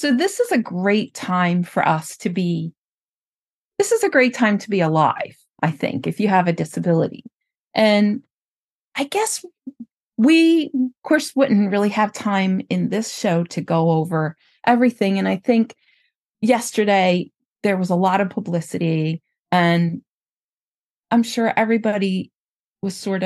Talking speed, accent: 150 wpm, American